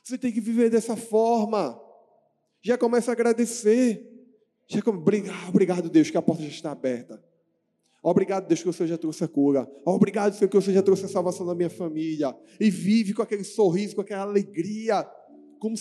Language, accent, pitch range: Portuguese, Brazilian, 160-230 Hz